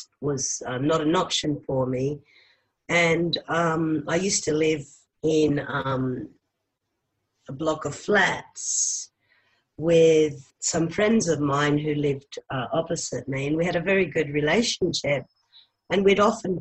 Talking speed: 140 wpm